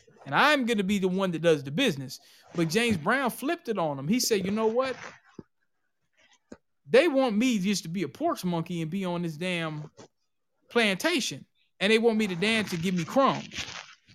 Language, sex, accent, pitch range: English, male, American, 165-210 Hz